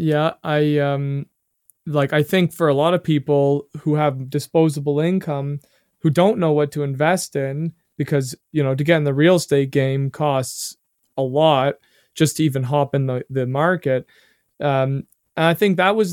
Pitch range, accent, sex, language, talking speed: 145-170 Hz, American, male, English, 180 wpm